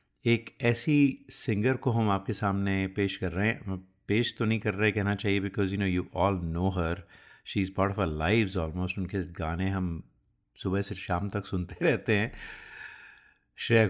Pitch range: 95-110 Hz